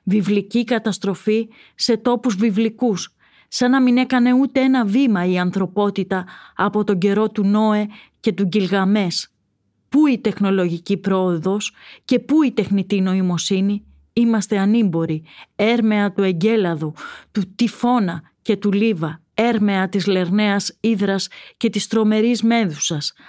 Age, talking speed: 30-49, 125 wpm